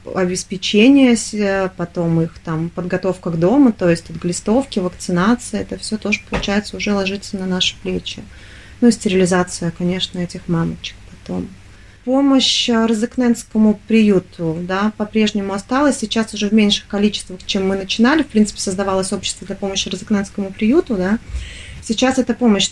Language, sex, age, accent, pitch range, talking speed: Russian, female, 30-49, native, 185-210 Hz, 140 wpm